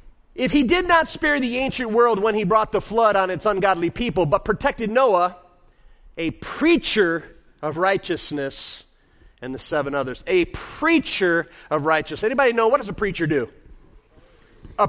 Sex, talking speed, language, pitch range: male, 160 wpm, English, 200-320 Hz